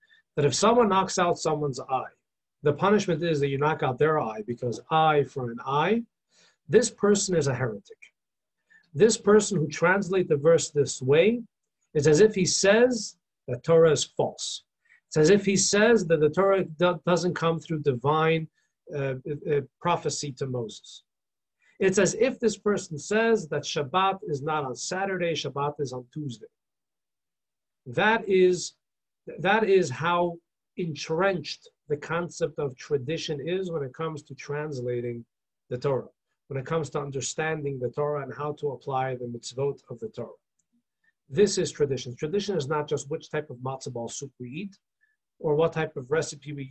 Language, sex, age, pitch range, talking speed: English, male, 50-69, 140-190 Hz, 165 wpm